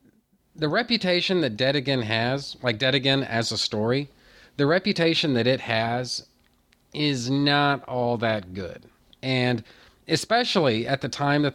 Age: 40-59